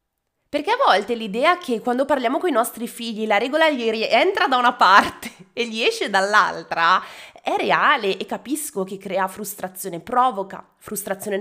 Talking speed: 165 wpm